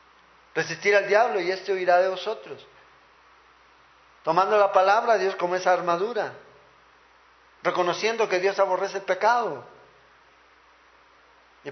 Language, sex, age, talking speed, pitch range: Spanish, male, 50-69, 120 wpm, 160-200 Hz